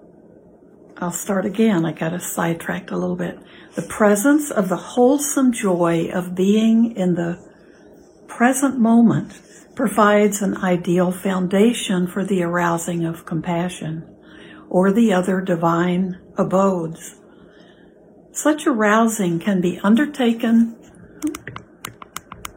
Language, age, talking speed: English, 60-79, 105 wpm